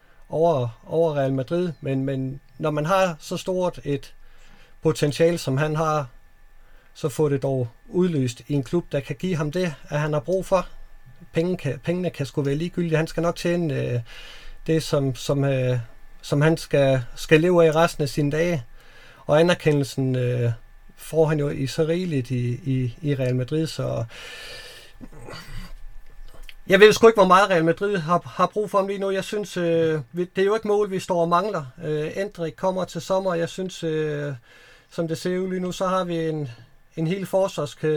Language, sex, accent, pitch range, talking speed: Danish, male, native, 135-175 Hz, 190 wpm